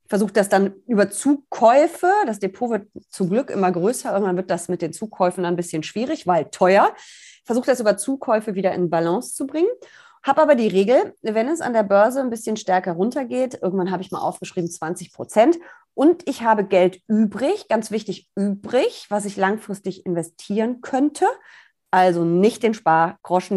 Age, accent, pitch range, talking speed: 30-49, German, 180-245 Hz, 180 wpm